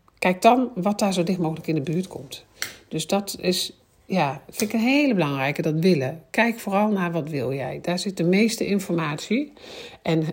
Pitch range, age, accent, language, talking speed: 160-200 Hz, 50-69, Dutch, Dutch, 200 wpm